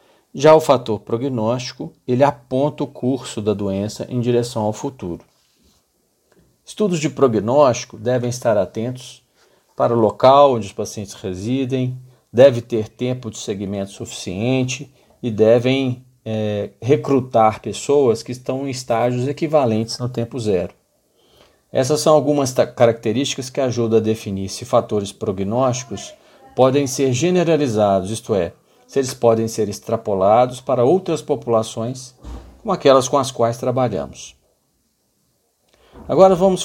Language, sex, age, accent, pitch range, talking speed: Portuguese, male, 50-69, Brazilian, 110-140 Hz, 125 wpm